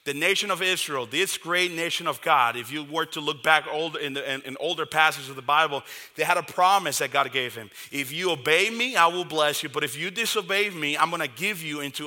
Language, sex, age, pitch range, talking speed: English, male, 30-49, 145-170 Hz, 250 wpm